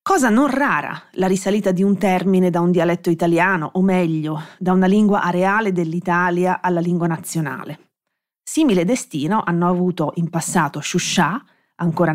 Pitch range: 165-220 Hz